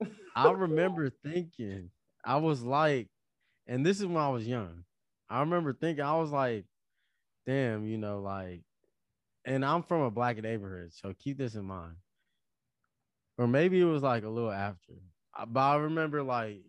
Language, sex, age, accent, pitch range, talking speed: English, male, 20-39, American, 100-130 Hz, 165 wpm